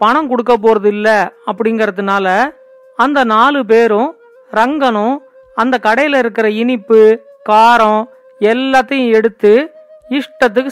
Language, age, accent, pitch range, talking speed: Tamil, 40-59, native, 220-275 Hz, 95 wpm